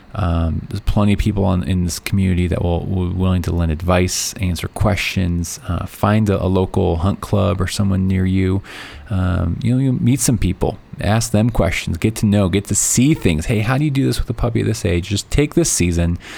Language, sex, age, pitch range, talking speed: English, male, 20-39, 90-110 Hz, 225 wpm